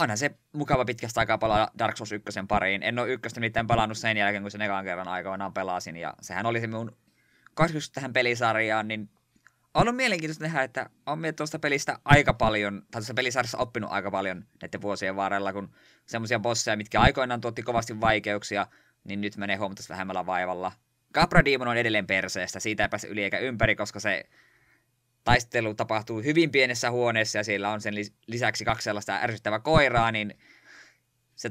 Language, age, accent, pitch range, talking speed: Finnish, 20-39, native, 105-125 Hz, 170 wpm